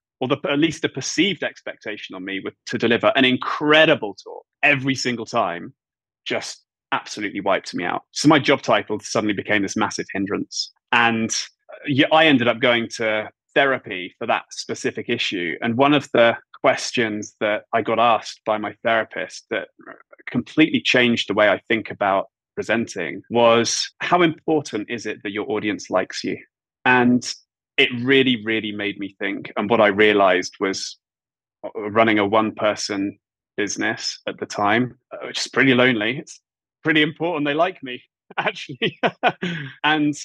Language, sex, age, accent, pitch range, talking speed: English, male, 20-39, British, 110-150 Hz, 155 wpm